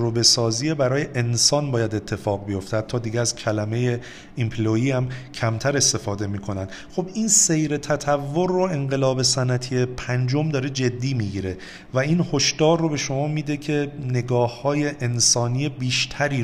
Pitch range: 110-145 Hz